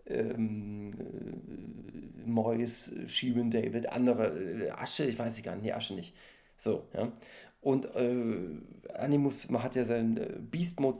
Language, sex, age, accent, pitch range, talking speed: German, male, 40-59, German, 120-155 Hz, 155 wpm